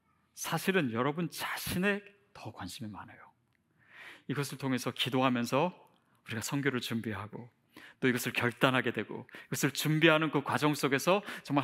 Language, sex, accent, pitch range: Korean, male, native, 150-240 Hz